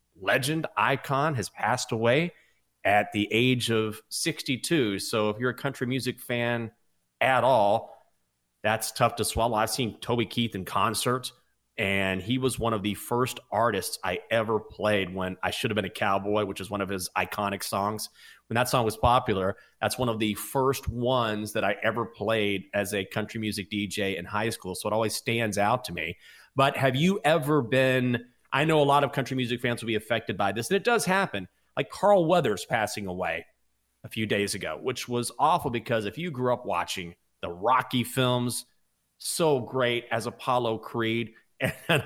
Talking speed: 190 wpm